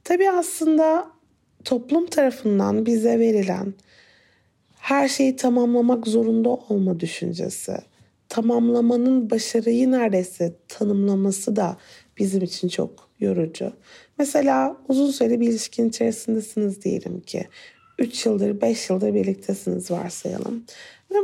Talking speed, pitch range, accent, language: 100 wpm, 210-270 Hz, native, Turkish